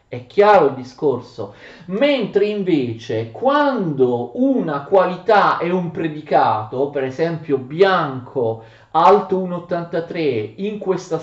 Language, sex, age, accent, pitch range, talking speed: Italian, male, 40-59, native, 135-225 Hz, 95 wpm